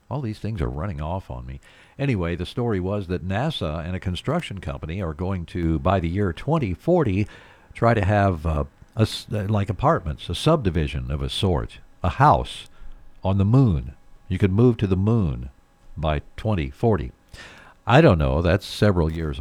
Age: 60-79